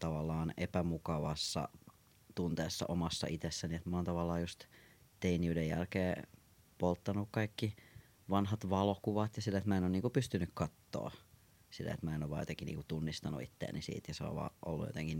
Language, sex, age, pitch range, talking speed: Finnish, male, 30-49, 85-105 Hz, 160 wpm